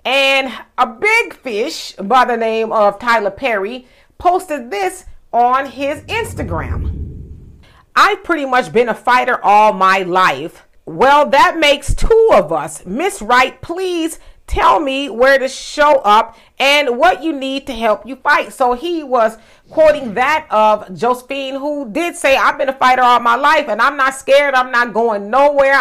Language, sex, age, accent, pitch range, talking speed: English, female, 40-59, American, 210-275 Hz, 165 wpm